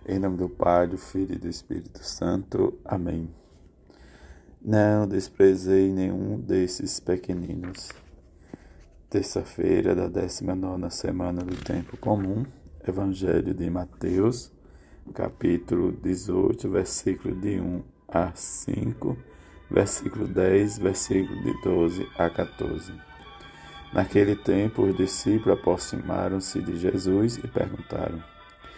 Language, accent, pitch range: Portuguese, Brazilian, 85-95 Hz